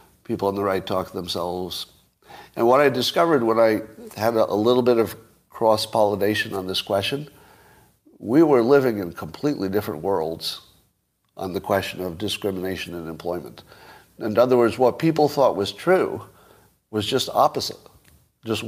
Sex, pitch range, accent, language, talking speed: male, 100-125 Hz, American, English, 155 wpm